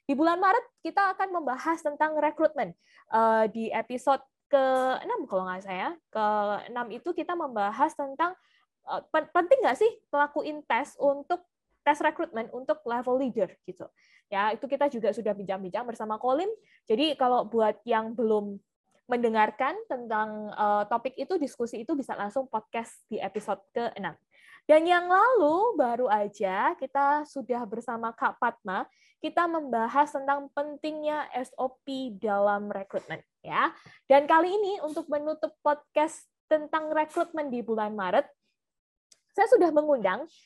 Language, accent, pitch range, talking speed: Indonesian, native, 230-310 Hz, 130 wpm